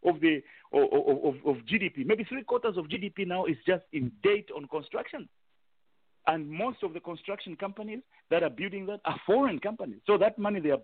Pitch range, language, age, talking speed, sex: 160-265 Hz, English, 50-69, 200 wpm, male